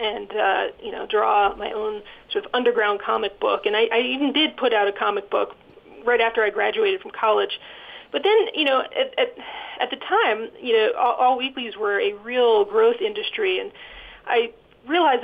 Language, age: English, 30-49